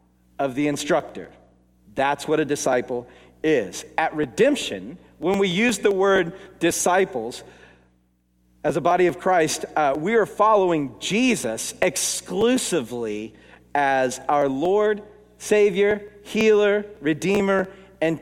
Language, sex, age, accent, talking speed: English, male, 40-59, American, 110 wpm